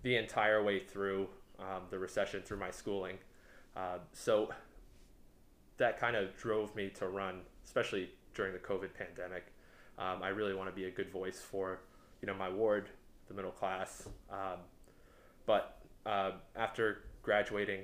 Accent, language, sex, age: American, English, male, 20-39